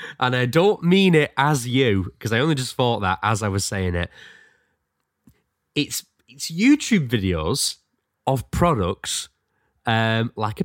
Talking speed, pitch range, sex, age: 150 wpm, 100-125 Hz, male, 20-39